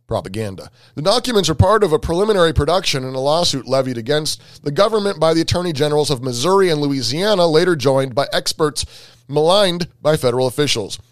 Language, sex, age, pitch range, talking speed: English, male, 30-49, 125-170 Hz, 175 wpm